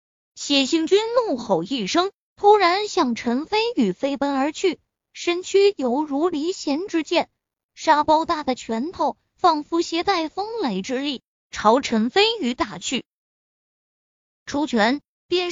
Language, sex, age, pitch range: Chinese, female, 20-39, 250-345 Hz